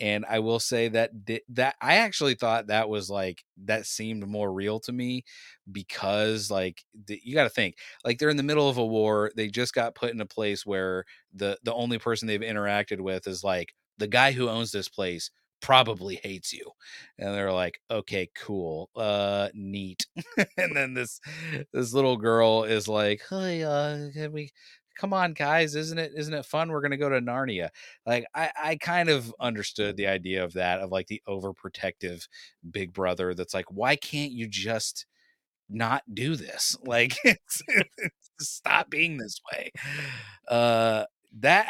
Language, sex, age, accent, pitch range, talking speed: English, male, 30-49, American, 100-140 Hz, 180 wpm